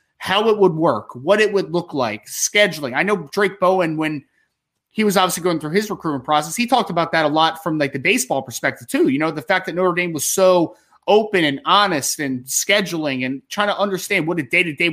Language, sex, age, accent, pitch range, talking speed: English, male, 30-49, American, 155-190 Hz, 225 wpm